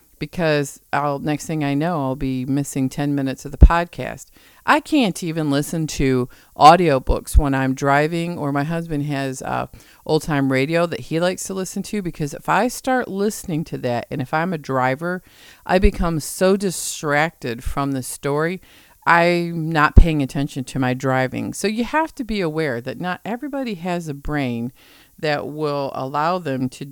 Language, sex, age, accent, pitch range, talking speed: English, female, 50-69, American, 135-170 Hz, 175 wpm